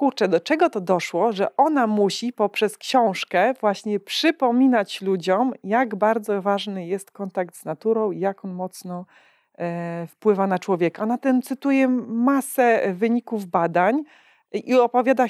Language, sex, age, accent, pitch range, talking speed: Polish, female, 40-59, native, 195-260 Hz, 140 wpm